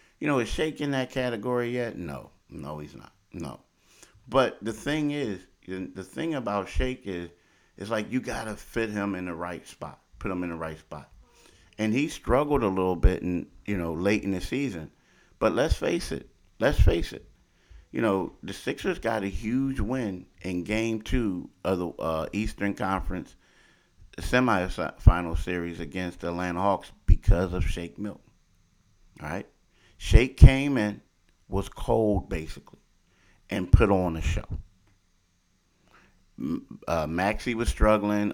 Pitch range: 85-105 Hz